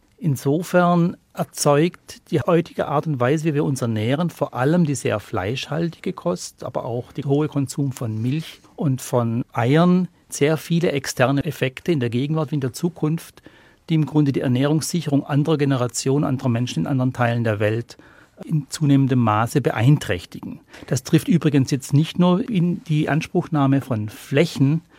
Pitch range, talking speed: 130-155 Hz, 160 wpm